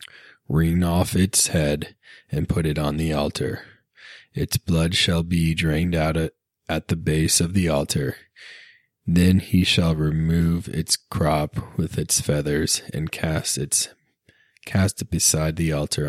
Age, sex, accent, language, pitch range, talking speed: 20-39, male, American, English, 75-95 Hz, 145 wpm